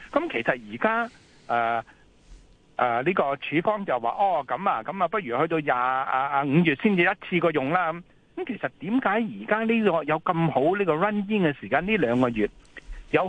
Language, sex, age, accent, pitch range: Chinese, male, 60-79, native, 120-190 Hz